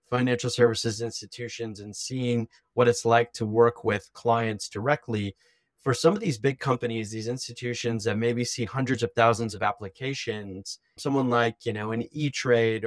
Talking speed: 165 wpm